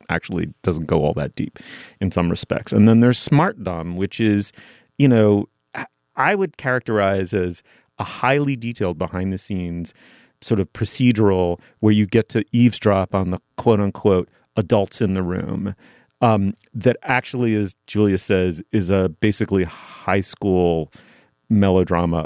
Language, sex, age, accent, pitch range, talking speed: English, male, 30-49, American, 90-120 Hz, 150 wpm